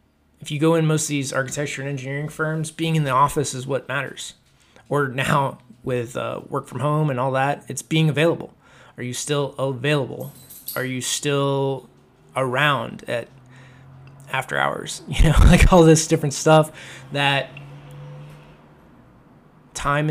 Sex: male